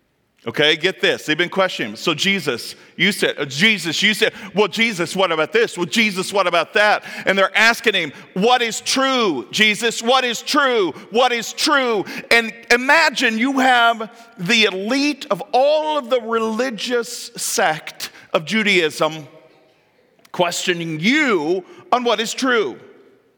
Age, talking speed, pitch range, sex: 40-59, 150 wpm, 185-245 Hz, male